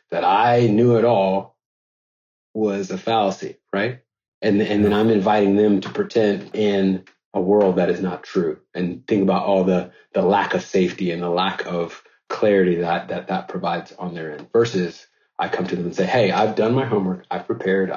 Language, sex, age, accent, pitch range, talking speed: English, male, 30-49, American, 95-115 Hz, 195 wpm